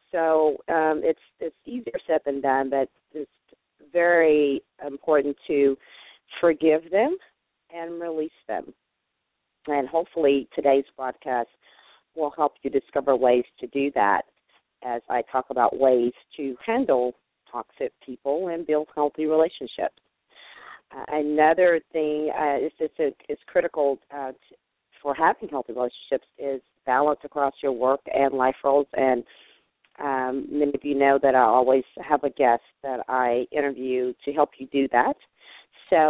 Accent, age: American, 40-59